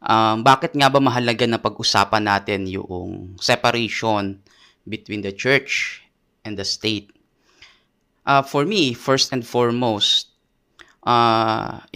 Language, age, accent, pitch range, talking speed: Filipino, 20-39, native, 105-130 Hz, 115 wpm